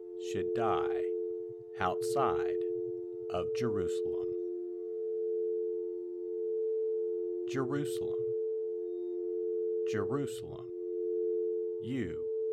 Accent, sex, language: American, male, English